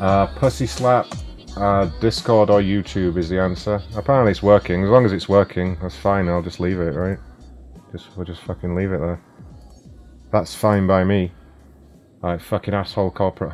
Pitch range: 85-105 Hz